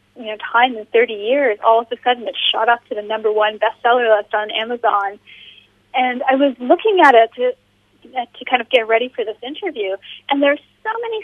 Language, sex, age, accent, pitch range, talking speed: English, female, 30-49, American, 220-350 Hz, 225 wpm